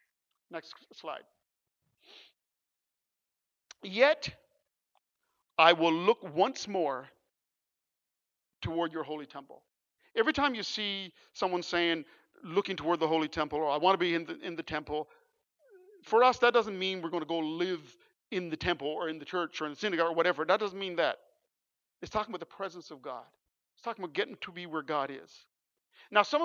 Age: 50-69